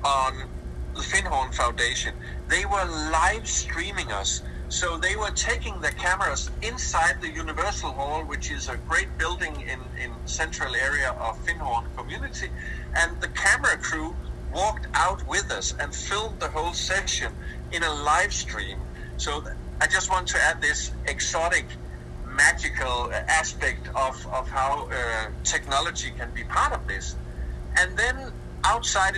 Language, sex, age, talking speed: English, male, 50-69, 145 wpm